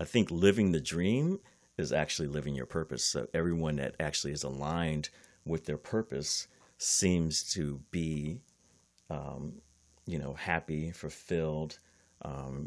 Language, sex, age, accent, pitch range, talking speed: English, male, 40-59, American, 70-80 Hz, 135 wpm